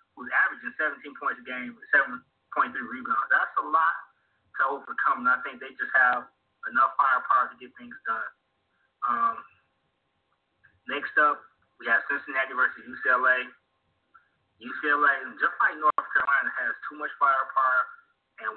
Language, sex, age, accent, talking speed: English, male, 20-39, American, 140 wpm